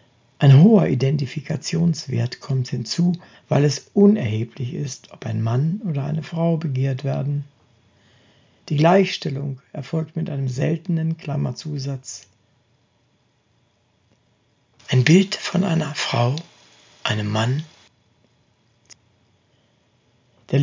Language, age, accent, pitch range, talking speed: German, 60-79, German, 125-165 Hz, 95 wpm